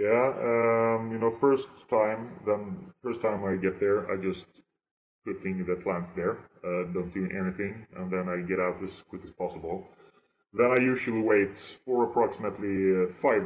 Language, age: English, 20-39